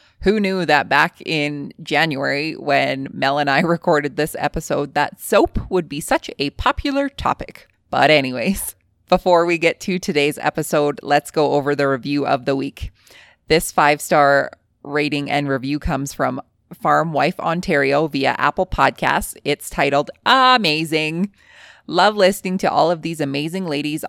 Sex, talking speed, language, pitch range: female, 150 wpm, English, 145-180 Hz